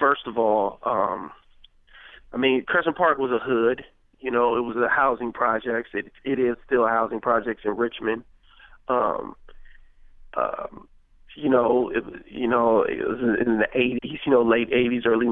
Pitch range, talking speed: 110-120 Hz, 170 wpm